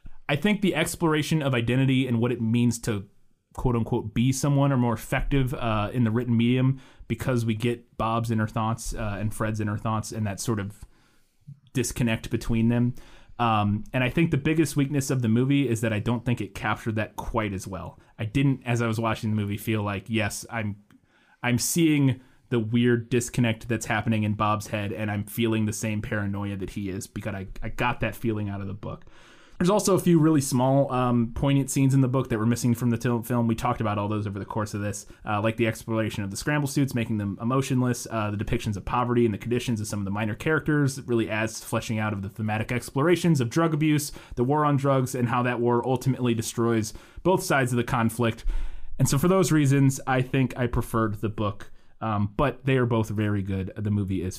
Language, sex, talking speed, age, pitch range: English, male, 225 wpm, 30-49, 110-130 Hz